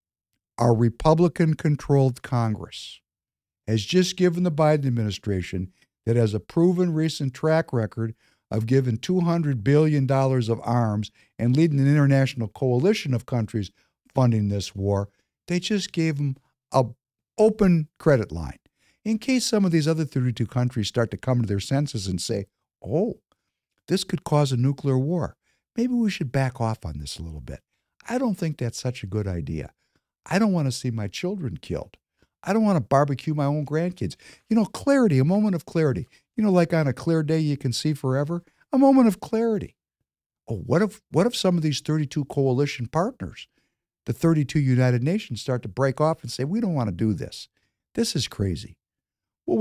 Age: 60-79